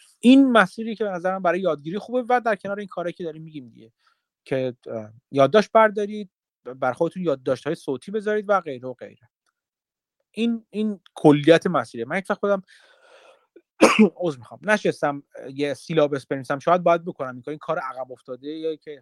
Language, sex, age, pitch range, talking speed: Persian, male, 30-49, 135-185 Hz, 175 wpm